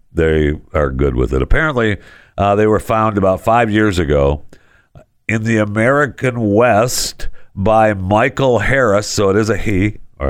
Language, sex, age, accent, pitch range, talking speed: English, male, 60-79, American, 95-135 Hz, 155 wpm